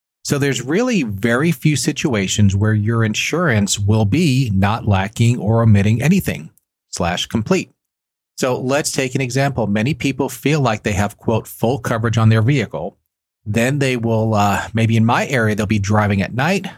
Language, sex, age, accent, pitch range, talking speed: English, male, 40-59, American, 105-130 Hz, 170 wpm